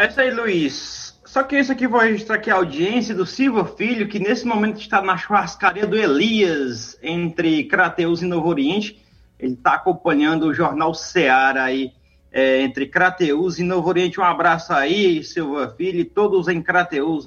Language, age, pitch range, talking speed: Portuguese, 20-39, 160-205 Hz, 175 wpm